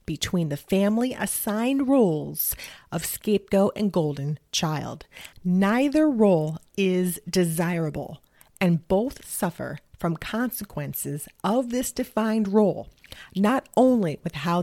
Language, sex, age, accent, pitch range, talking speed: English, female, 30-49, American, 155-205 Hz, 110 wpm